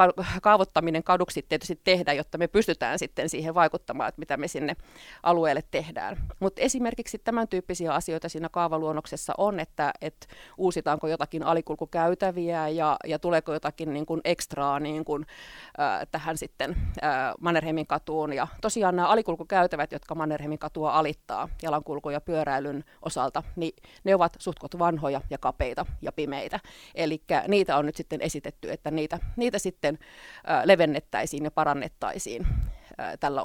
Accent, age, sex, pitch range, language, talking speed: native, 30-49, female, 155-185 Hz, Finnish, 140 wpm